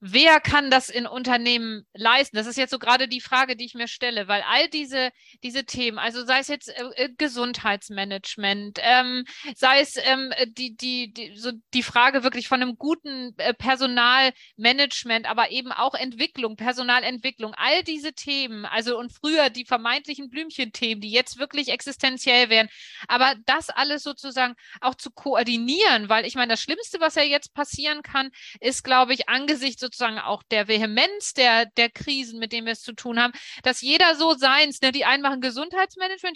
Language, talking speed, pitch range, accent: German, 180 wpm, 235-285 Hz, German